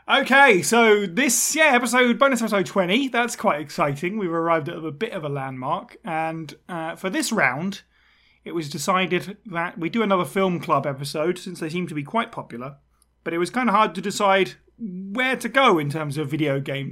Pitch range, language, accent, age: 160-205 Hz, English, British, 30-49